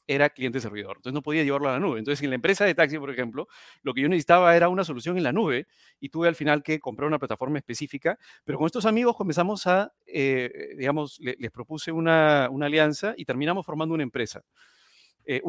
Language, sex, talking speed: Spanish, male, 220 wpm